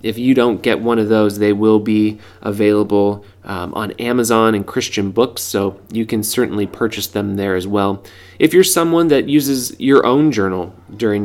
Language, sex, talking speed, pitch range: English, male, 185 wpm, 100-120 Hz